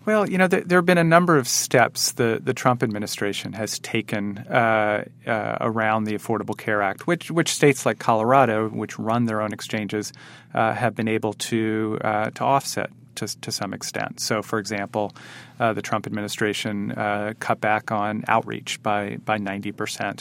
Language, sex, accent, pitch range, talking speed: English, male, American, 105-130 Hz, 180 wpm